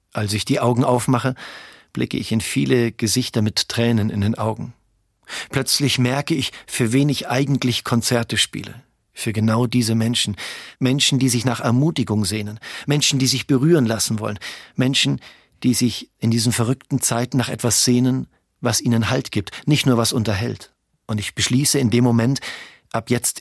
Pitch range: 110-130 Hz